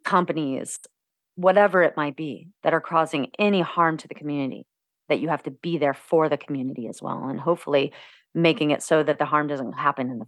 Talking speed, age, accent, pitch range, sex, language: 210 wpm, 30-49, American, 155-195 Hz, female, English